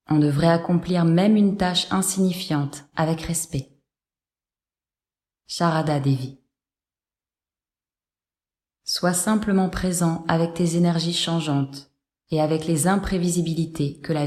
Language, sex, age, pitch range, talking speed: French, female, 20-39, 140-175 Hz, 100 wpm